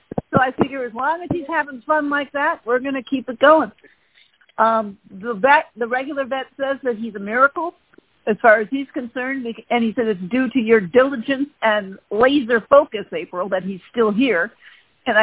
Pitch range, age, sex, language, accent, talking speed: 210-280 Hz, 50-69, female, English, American, 195 wpm